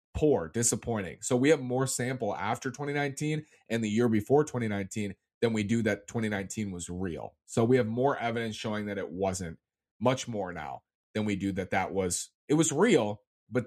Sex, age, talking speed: male, 30-49, 190 wpm